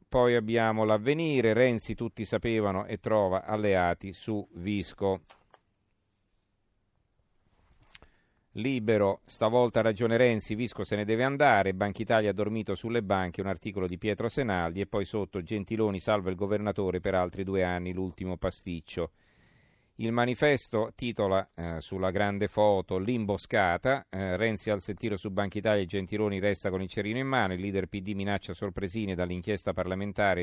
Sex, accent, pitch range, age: male, native, 95-110 Hz, 40-59